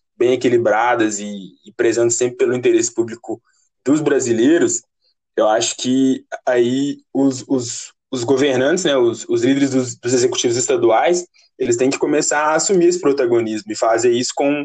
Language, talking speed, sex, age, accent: Portuguese, 160 wpm, male, 20-39, Brazilian